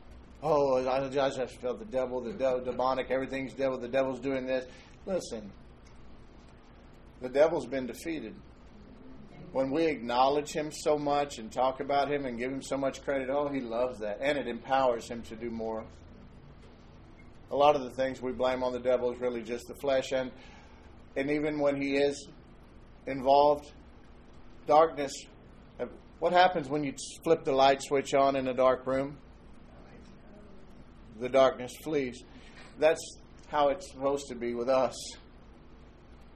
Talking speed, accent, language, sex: 160 wpm, American, English, male